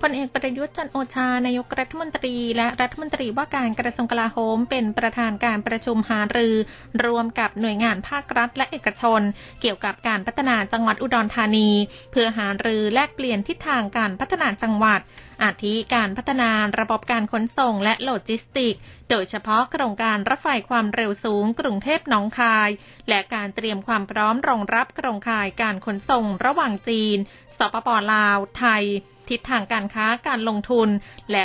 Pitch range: 215-255 Hz